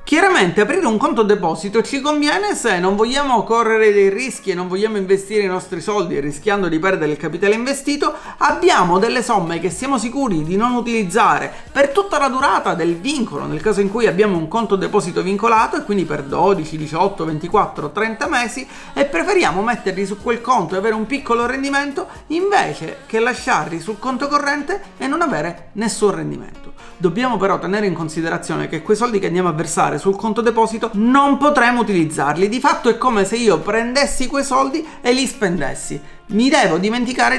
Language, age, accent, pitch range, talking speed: Italian, 40-59, native, 190-245 Hz, 180 wpm